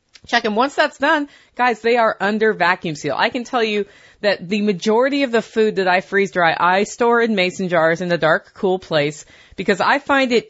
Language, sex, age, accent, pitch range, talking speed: English, female, 30-49, American, 170-215 Hz, 225 wpm